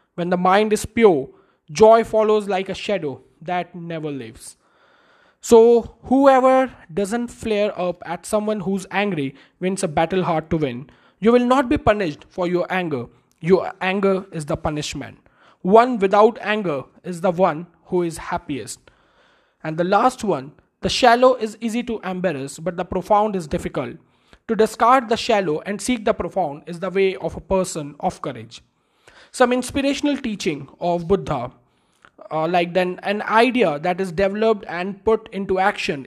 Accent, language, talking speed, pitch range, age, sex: native, Hindi, 165 wpm, 170-220 Hz, 20-39, male